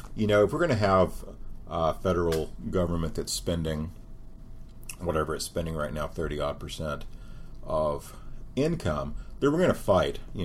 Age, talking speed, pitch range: 40-59, 155 wpm, 80-95 Hz